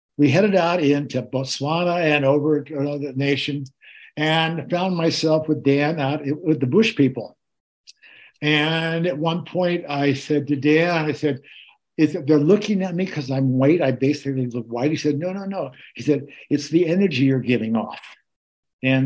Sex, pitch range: male, 140-175 Hz